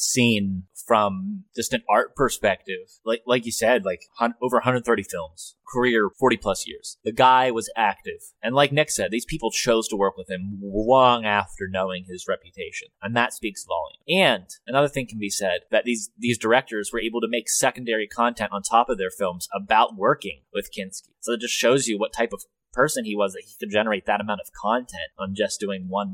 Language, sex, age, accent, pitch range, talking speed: English, male, 30-49, American, 110-150 Hz, 205 wpm